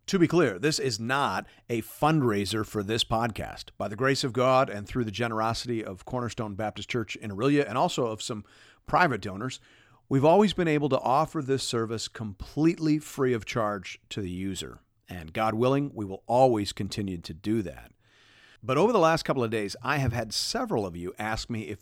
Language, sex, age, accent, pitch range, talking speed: English, male, 40-59, American, 105-135 Hz, 200 wpm